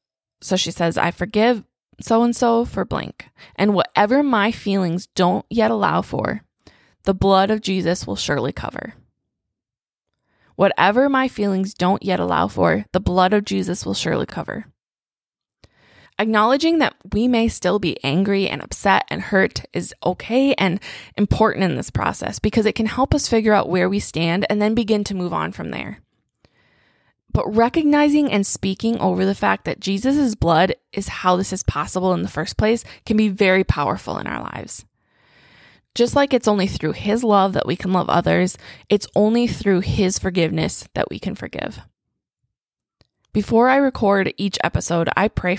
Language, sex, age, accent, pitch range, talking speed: English, female, 20-39, American, 180-220 Hz, 165 wpm